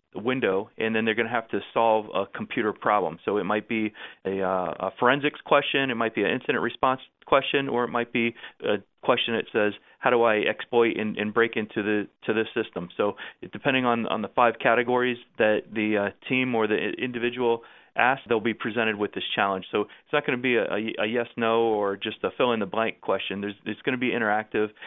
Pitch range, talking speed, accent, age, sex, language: 105-125 Hz, 225 wpm, American, 30-49, male, English